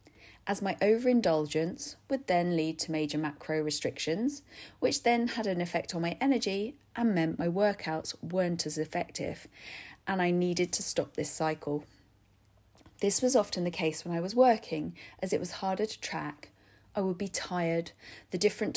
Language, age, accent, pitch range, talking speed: English, 40-59, British, 155-200 Hz, 170 wpm